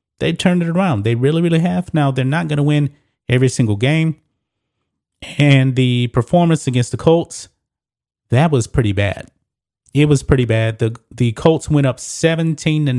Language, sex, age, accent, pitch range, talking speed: English, male, 30-49, American, 110-135 Hz, 175 wpm